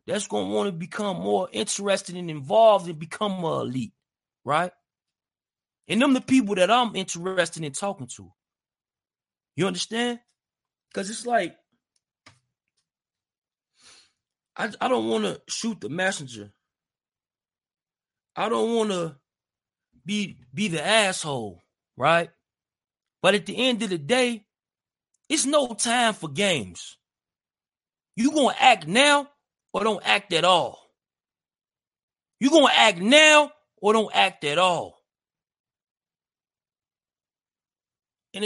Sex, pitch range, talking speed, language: male, 170-240 Hz, 125 wpm, English